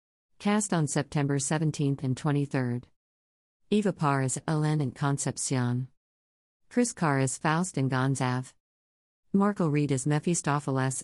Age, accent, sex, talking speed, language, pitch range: 50-69, American, female, 120 wpm, English, 125-175 Hz